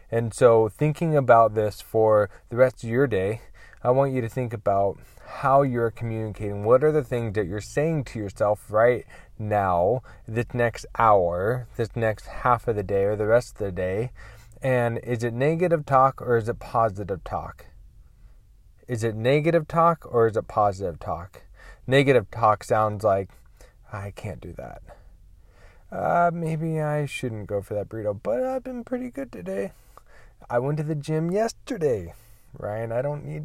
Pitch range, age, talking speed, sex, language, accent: 105-140 Hz, 20-39, 175 wpm, male, English, American